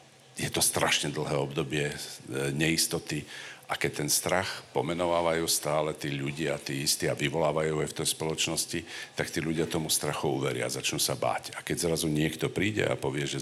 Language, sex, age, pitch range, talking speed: Slovak, male, 50-69, 65-80 Hz, 185 wpm